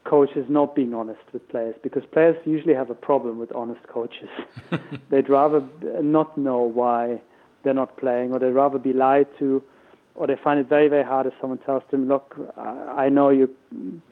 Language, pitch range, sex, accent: Swedish, 130-150 Hz, male, German